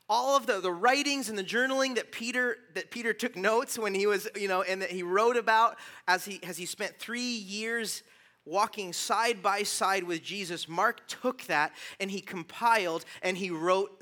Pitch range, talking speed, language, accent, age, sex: 175-225 Hz, 195 wpm, English, American, 30-49, male